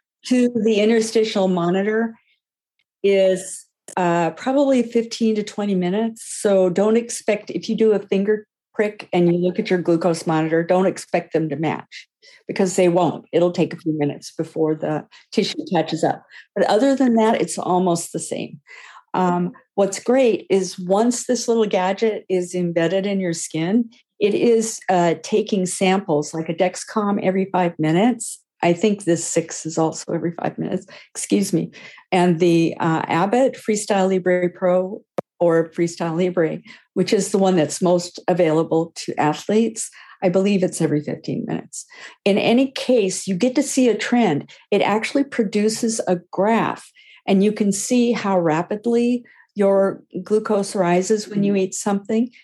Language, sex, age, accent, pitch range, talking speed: English, female, 50-69, American, 175-225 Hz, 160 wpm